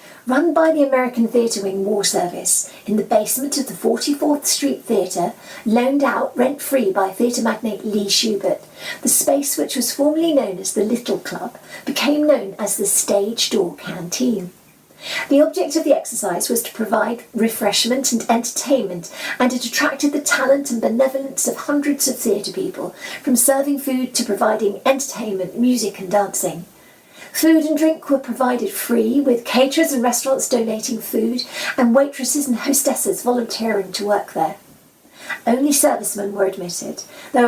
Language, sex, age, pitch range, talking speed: English, female, 40-59, 205-270 Hz, 155 wpm